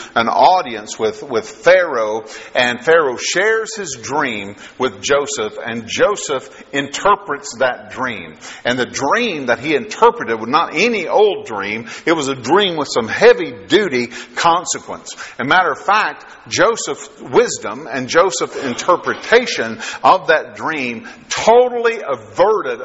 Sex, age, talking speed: male, 50-69, 135 wpm